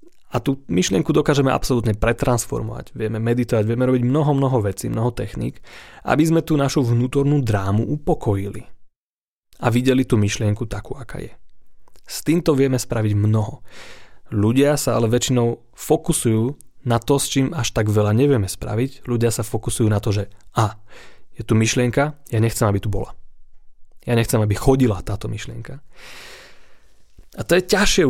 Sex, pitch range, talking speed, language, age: male, 105-135 Hz, 155 wpm, Slovak, 30-49